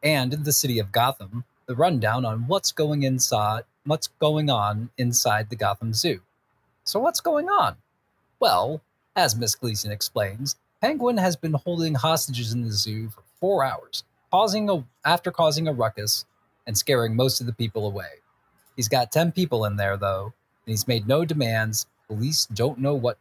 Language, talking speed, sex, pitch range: English, 175 wpm, male, 110-145 Hz